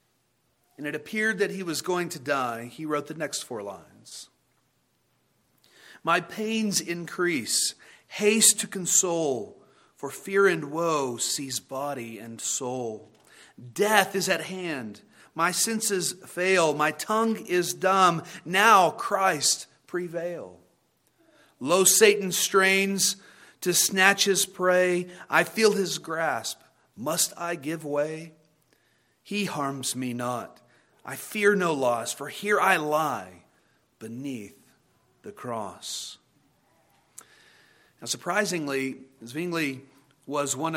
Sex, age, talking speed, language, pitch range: male, 40-59, 115 wpm, English, 150-205 Hz